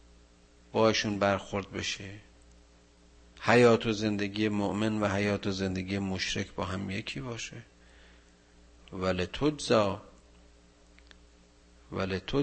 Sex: male